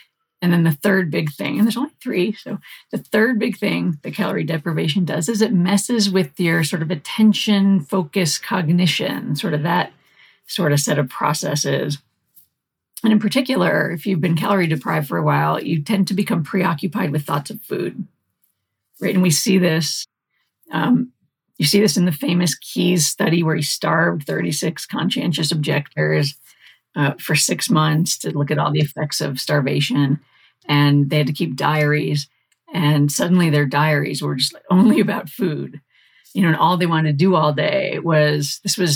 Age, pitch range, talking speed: 40-59, 150-200 Hz, 180 wpm